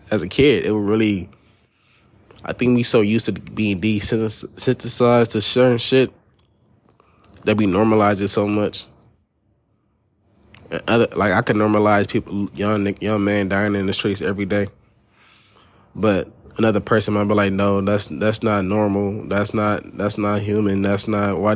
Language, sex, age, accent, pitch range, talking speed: English, male, 20-39, American, 95-110 Hz, 160 wpm